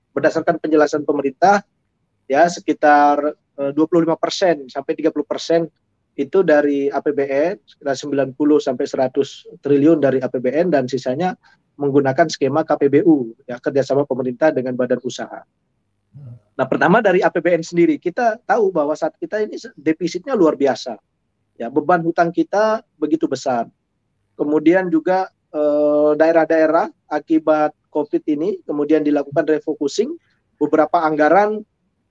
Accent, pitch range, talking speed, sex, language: native, 140-170 Hz, 110 wpm, male, Indonesian